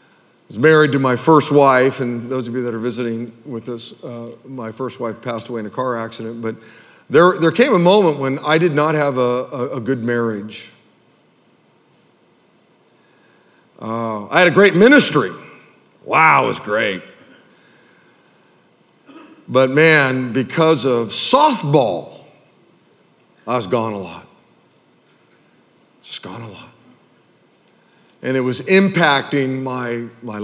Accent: American